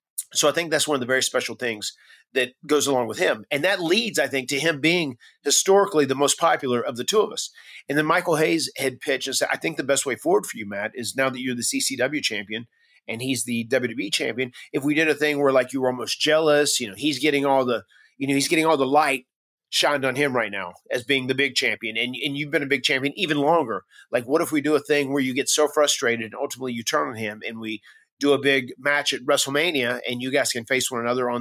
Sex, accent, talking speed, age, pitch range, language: male, American, 265 wpm, 30-49, 125-155 Hz, English